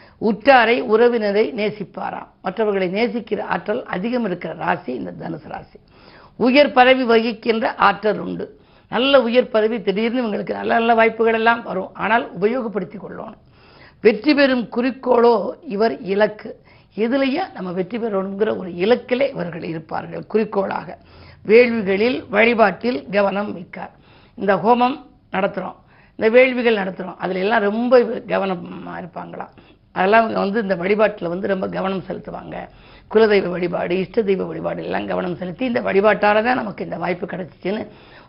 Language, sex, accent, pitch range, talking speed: Tamil, female, native, 190-235 Hz, 130 wpm